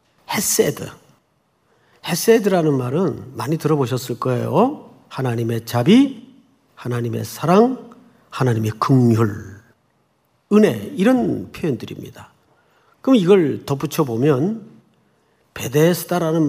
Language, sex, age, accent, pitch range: Korean, male, 40-59, native, 130-210 Hz